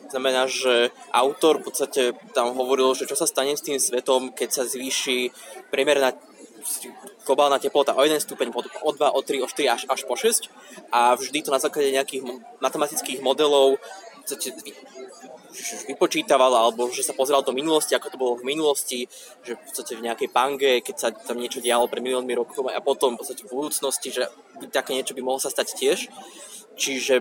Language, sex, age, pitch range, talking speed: Slovak, male, 20-39, 125-175 Hz, 180 wpm